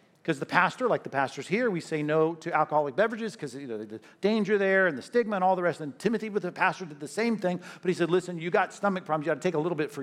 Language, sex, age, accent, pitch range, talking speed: English, male, 50-69, American, 155-200 Hz, 305 wpm